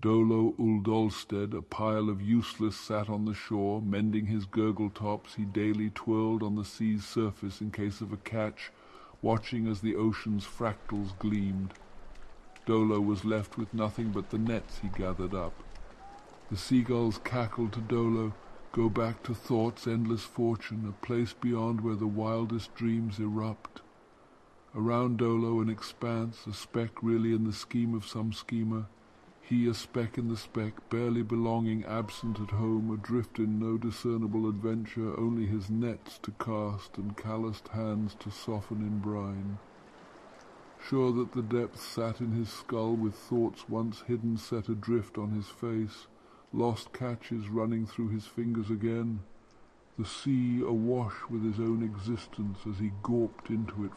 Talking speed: 155 wpm